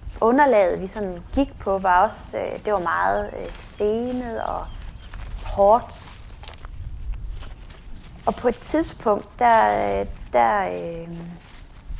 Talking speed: 115 wpm